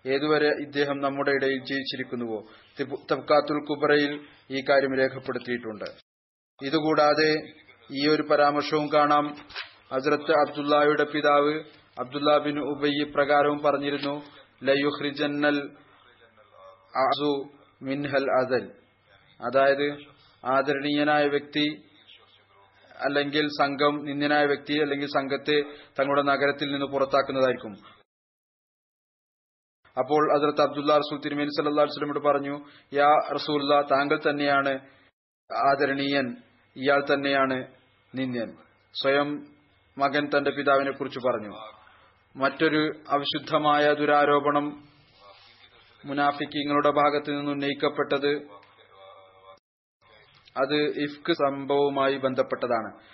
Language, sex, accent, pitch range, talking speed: Malayalam, male, native, 135-145 Hz, 80 wpm